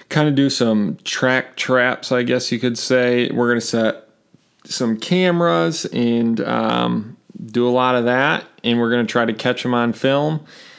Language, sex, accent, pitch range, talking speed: English, male, American, 110-130 Hz, 185 wpm